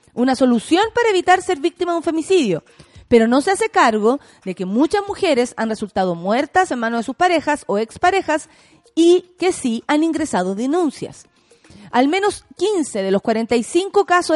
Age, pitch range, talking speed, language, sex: 30-49, 230-335 Hz, 170 wpm, Spanish, female